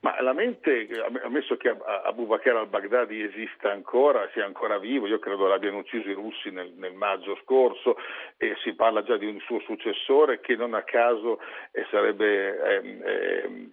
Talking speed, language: 160 wpm, Italian